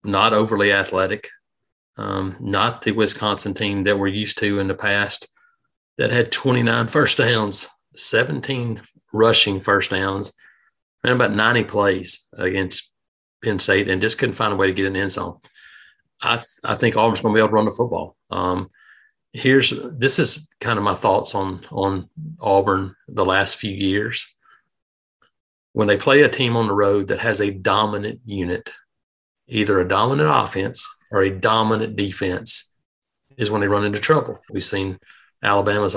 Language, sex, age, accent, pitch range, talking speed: English, male, 40-59, American, 100-115 Hz, 170 wpm